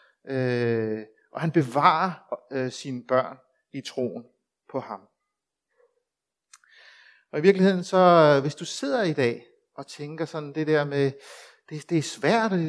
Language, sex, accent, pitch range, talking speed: Danish, male, native, 130-185 Hz, 150 wpm